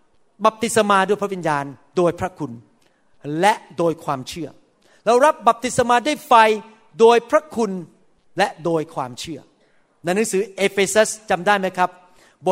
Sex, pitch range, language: male, 180-255 Hz, Thai